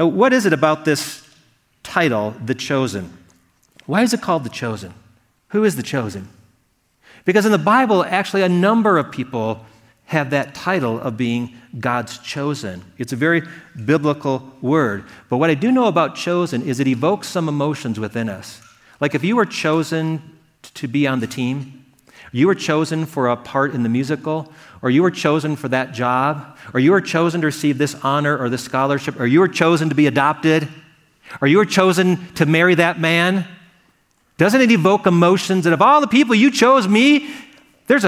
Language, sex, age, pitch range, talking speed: English, male, 40-59, 125-175 Hz, 185 wpm